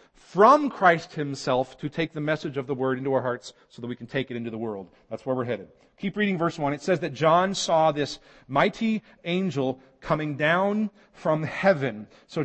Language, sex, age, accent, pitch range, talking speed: English, male, 40-59, American, 130-170 Hz, 205 wpm